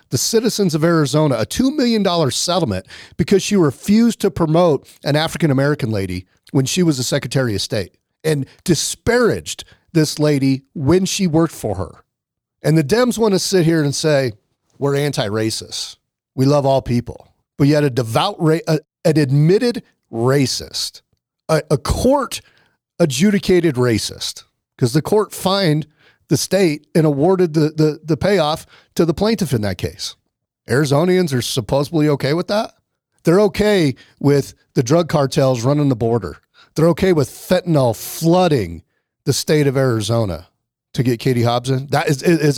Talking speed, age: 150 wpm, 40-59